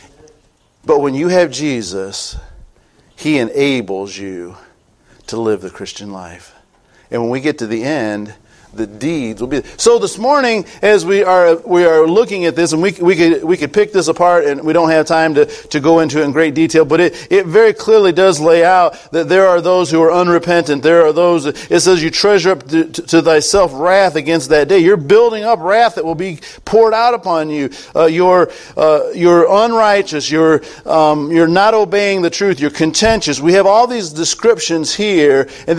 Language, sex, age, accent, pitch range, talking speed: English, male, 50-69, American, 150-215 Hz, 200 wpm